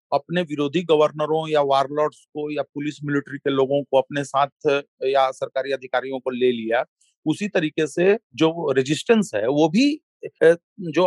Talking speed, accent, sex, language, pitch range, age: 155 wpm, native, male, Hindi, 135-160 Hz, 40-59